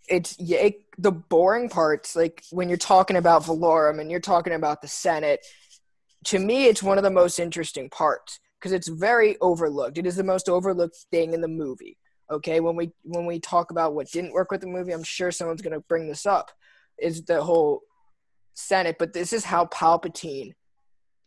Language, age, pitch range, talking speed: English, 20-39, 165-185 Hz, 190 wpm